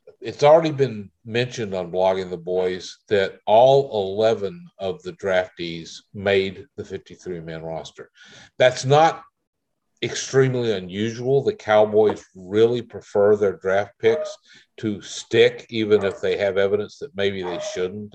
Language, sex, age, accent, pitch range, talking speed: English, male, 50-69, American, 95-130 Hz, 135 wpm